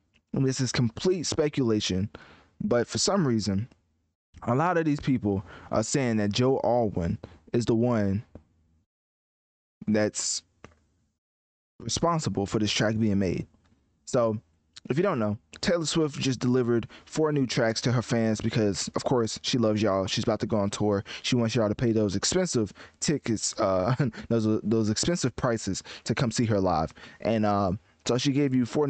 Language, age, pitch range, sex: English, 20-39, 105-130 Hz, male